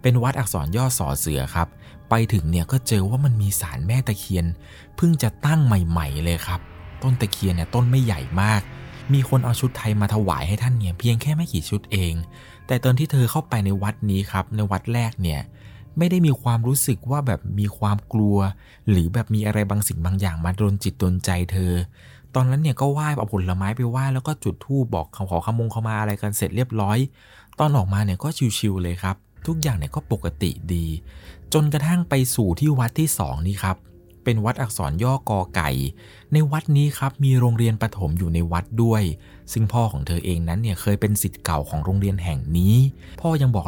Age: 20-39